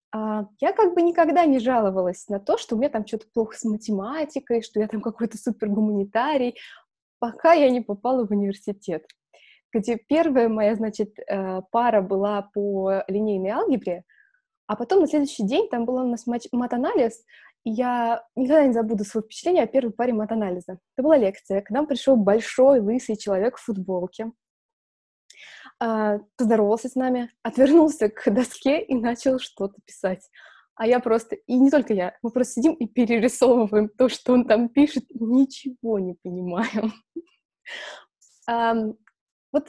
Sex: female